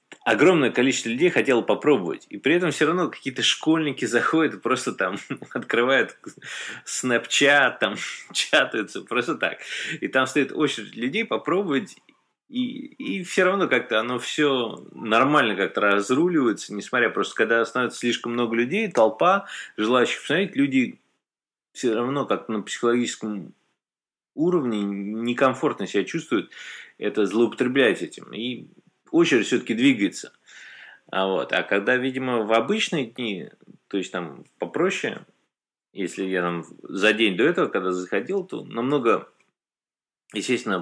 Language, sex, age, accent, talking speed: Russian, male, 20-39, native, 130 wpm